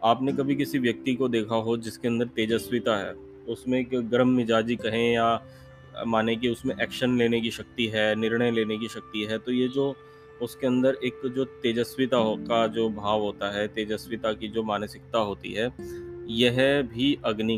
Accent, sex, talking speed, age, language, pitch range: native, male, 180 wpm, 30-49, Hindi, 110-130 Hz